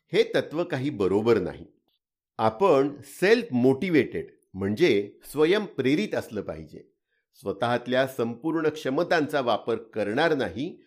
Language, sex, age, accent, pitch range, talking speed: Marathi, male, 50-69, native, 115-175 Hz, 100 wpm